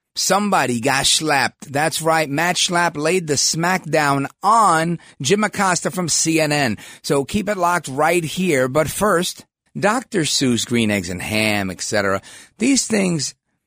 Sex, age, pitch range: male, 40-59, 110-170 Hz